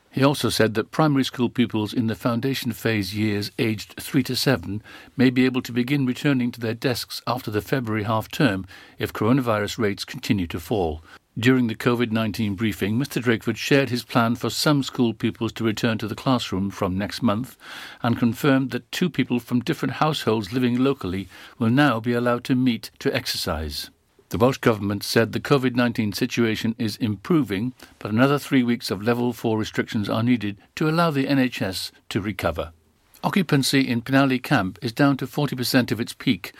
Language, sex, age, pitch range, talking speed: English, male, 60-79, 110-130 Hz, 180 wpm